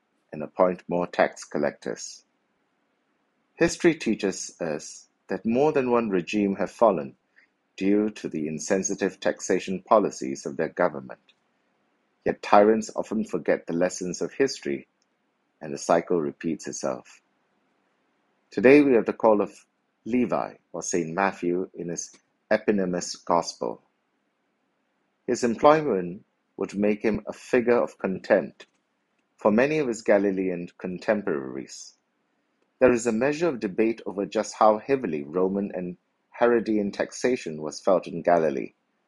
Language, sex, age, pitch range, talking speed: English, male, 60-79, 90-115 Hz, 130 wpm